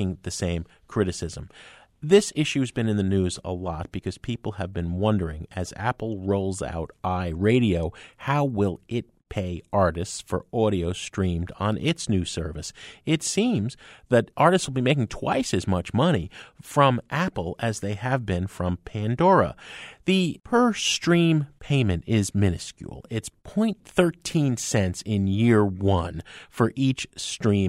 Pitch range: 95-135 Hz